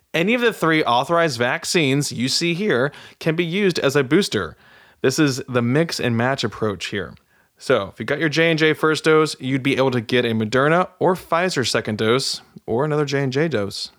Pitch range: 115-150 Hz